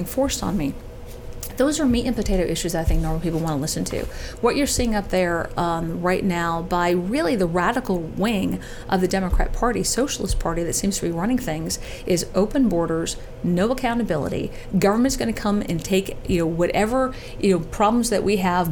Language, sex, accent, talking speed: English, female, American, 200 wpm